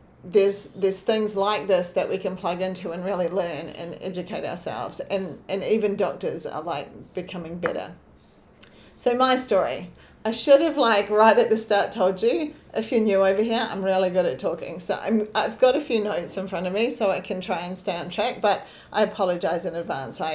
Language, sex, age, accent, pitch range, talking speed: English, female, 40-59, Australian, 180-220 Hz, 210 wpm